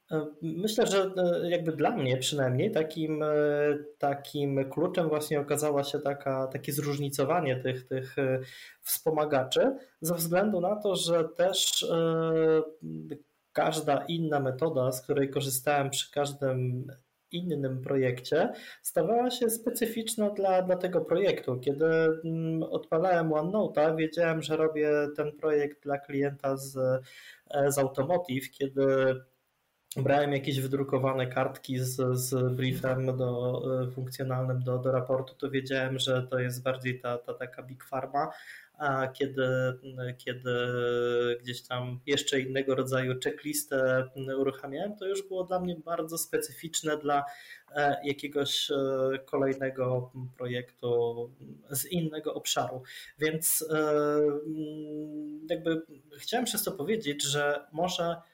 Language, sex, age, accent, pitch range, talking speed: Polish, male, 20-39, native, 130-160 Hz, 110 wpm